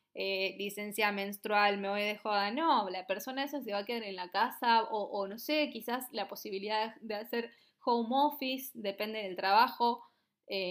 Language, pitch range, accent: Spanish, 200-260 Hz, Argentinian